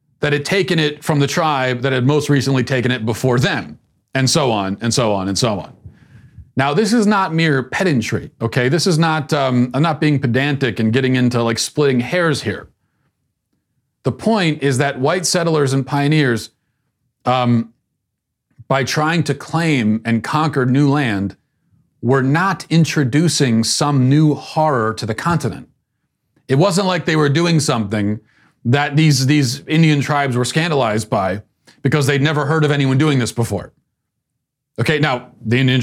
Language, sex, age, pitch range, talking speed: English, male, 40-59, 115-150 Hz, 165 wpm